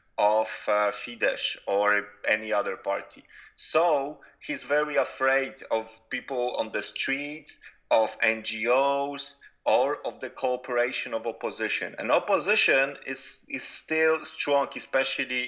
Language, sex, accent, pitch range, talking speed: English, male, Polish, 120-150 Hz, 120 wpm